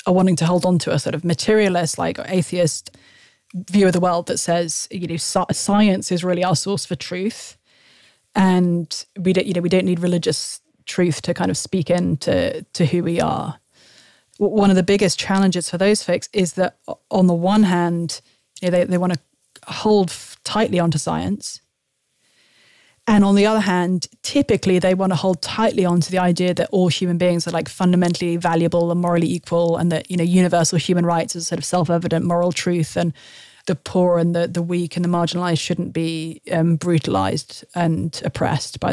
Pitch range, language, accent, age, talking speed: 170-190 Hz, English, British, 30-49, 195 wpm